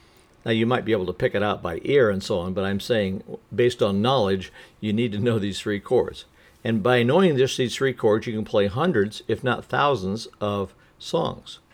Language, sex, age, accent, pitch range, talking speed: English, male, 60-79, American, 105-160 Hz, 220 wpm